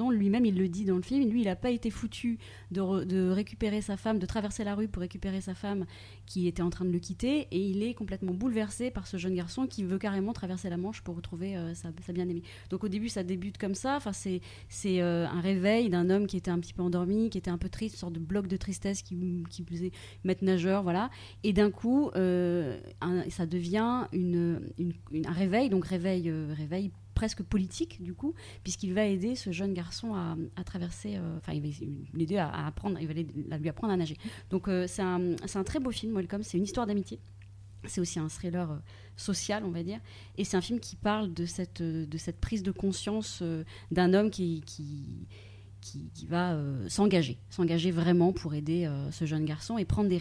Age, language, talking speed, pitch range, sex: 20-39, French, 225 wpm, 165-200 Hz, female